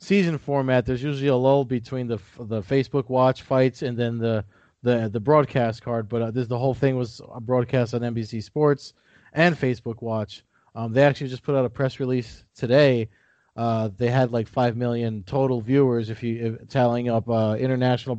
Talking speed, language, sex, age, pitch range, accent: 190 wpm, English, male, 20-39, 115-135 Hz, American